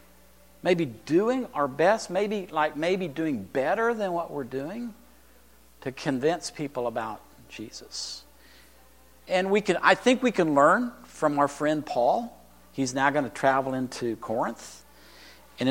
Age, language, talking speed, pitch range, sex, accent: 50-69, English, 145 wpm, 130-185 Hz, male, American